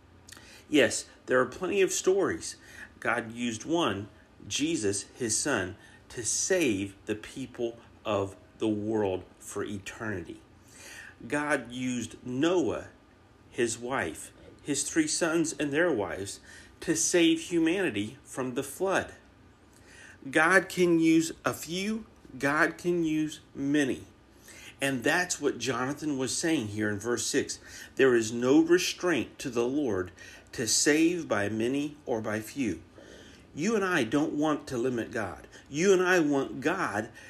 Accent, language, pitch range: American, English, 115-175 Hz